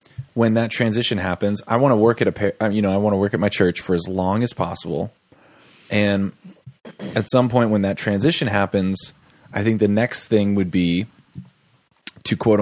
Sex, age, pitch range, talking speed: male, 20-39, 95-125 Hz, 195 wpm